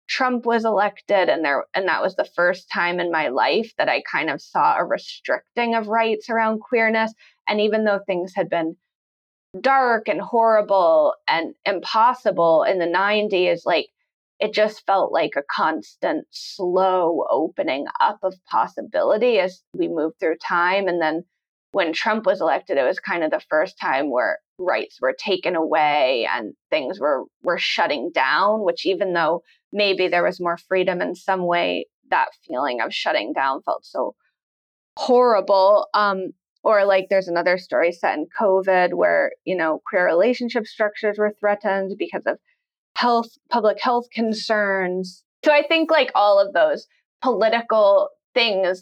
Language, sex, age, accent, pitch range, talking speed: English, female, 20-39, American, 180-230 Hz, 160 wpm